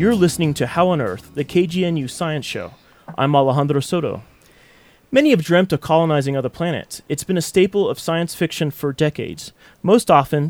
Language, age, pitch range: English, 30-49, 140-170 Hz